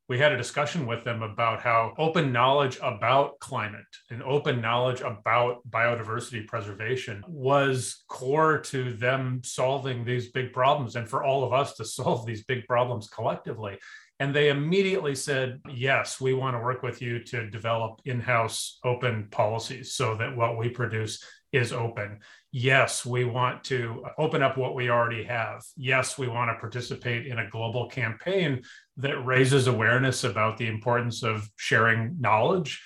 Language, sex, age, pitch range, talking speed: English, male, 30-49, 115-140 Hz, 160 wpm